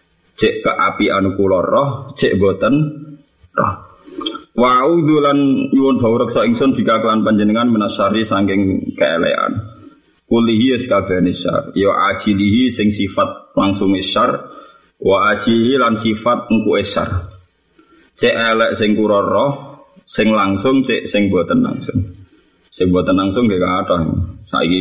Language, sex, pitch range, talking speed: Indonesian, male, 95-120 Hz, 125 wpm